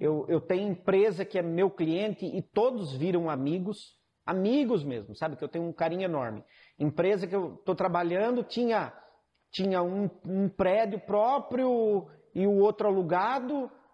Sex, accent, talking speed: male, Brazilian, 155 wpm